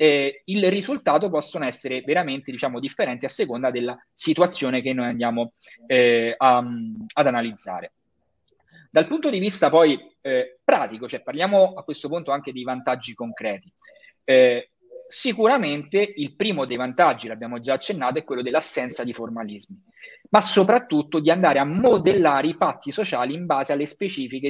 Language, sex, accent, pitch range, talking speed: Italian, male, native, 125-185 Hz, 150 wpm